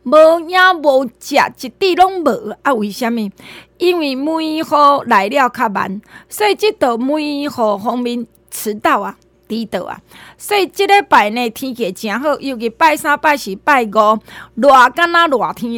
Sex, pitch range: female, 220-310 Hz